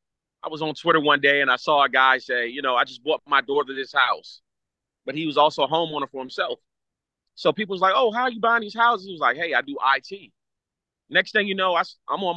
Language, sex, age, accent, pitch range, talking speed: English, male, 30-49, American, 140-180 Hz, 265 wpm